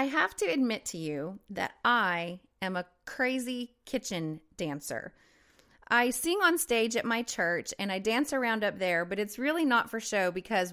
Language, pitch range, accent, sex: English, 200-245 Hz, American, female